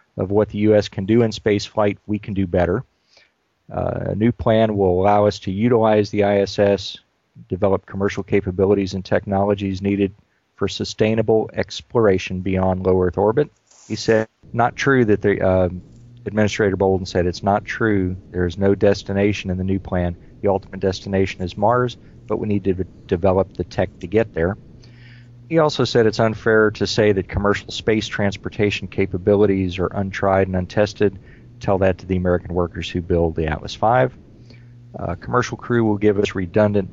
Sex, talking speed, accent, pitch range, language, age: male, 170 wpm, American, 95-110 Hz, English, 40-59